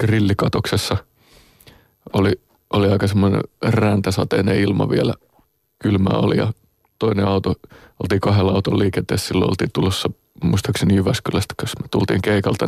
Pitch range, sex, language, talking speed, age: 100-110 Hz, male, Finnish, 125 wpm, 30-49